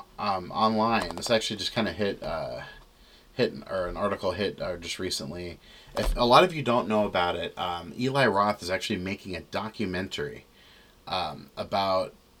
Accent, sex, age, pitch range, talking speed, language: American, male, 30-49, 90-110 Hz, 165 wpm, English